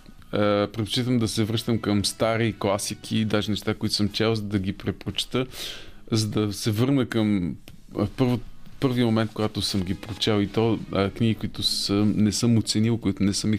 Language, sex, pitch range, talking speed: Bulgarian, male, 100-120 Hz, 185 wpm